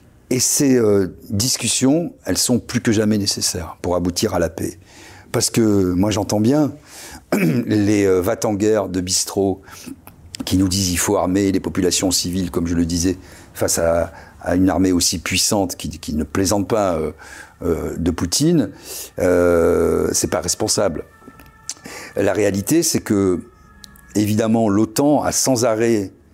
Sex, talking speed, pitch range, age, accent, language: male, 155 wpm, 90-115 Hz, 50-69, French, French